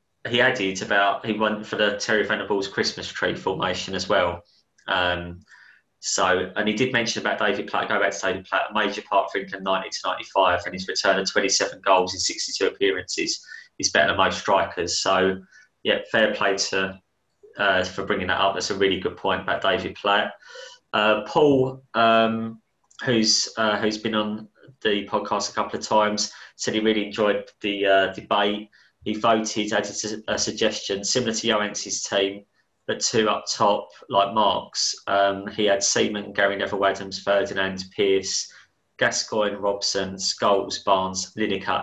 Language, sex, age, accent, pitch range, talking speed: English, male, 20-39, British, 95-110 Hz, 170 wpm